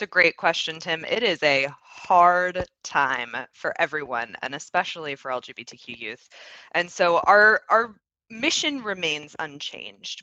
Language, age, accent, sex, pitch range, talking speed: English, 20-39, American, female, 155-195 Hz, 135 wpm